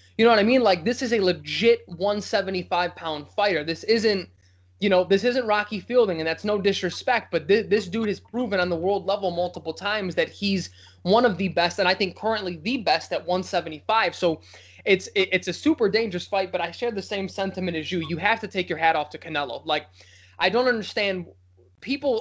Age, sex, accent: 20-39, male, American